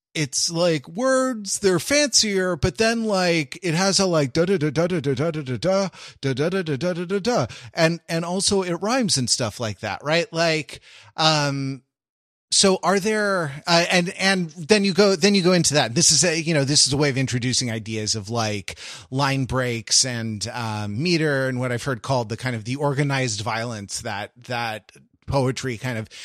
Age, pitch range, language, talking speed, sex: 30-49, 115-165 Hz, English, 200 wpm, male